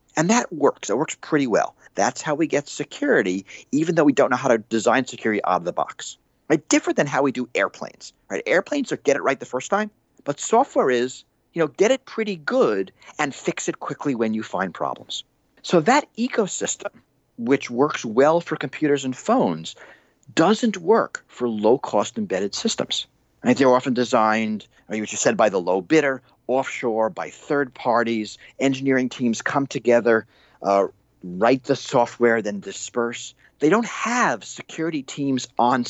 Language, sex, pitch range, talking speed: English, male, 115-170 Hz, 175 wpm